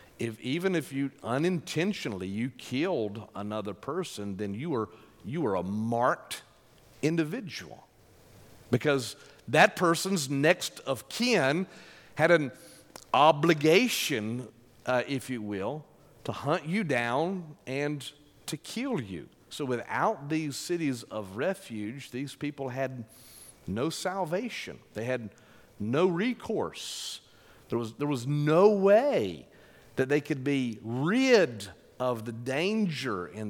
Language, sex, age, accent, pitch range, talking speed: English, male, 50-69, American, 110-150 Hz, 120 wpm